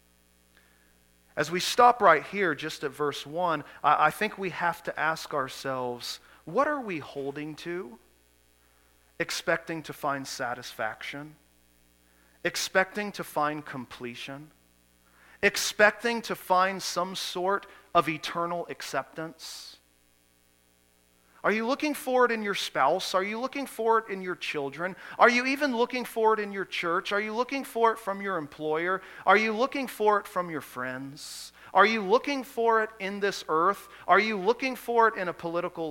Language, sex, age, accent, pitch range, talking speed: English, male, 40-59, American, 135-215 Hz, 155 wpm